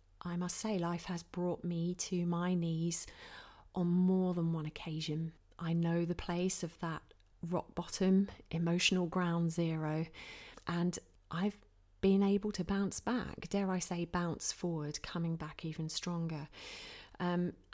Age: 30-49